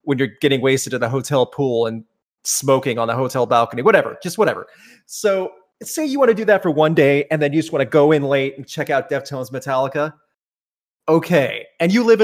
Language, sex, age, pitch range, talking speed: English, male, 30-49, 130-170 Hz, 220 wpm